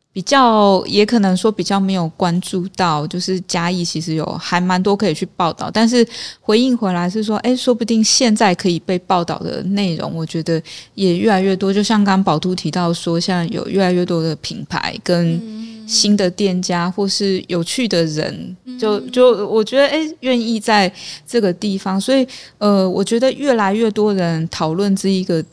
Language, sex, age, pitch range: English, female, 20-39, 170-210 Hz